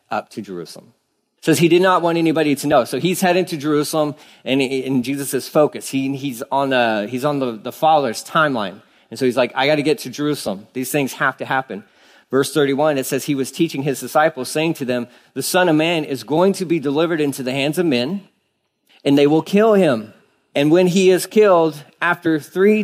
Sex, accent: male, American